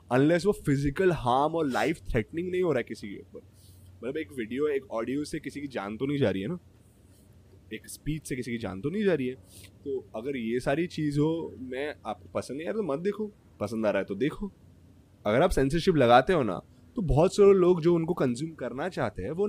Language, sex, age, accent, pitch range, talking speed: English, male, 20-39, Indian, 105-170 Hz, 185 wpm